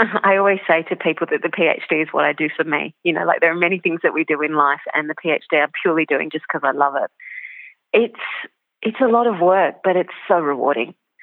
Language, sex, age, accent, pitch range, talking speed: English, female, 30-49, Australian, 155-175 Hz, 250 wpm